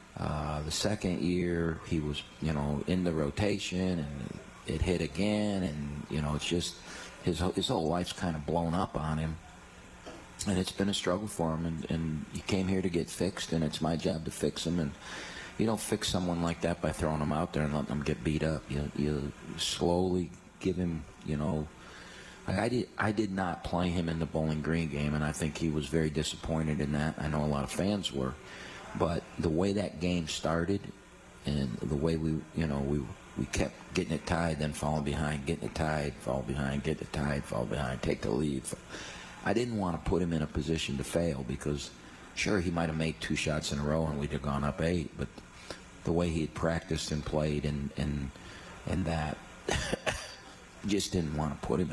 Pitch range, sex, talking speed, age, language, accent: 75-85 Hz, male, 215 wpm, 40-59, English, American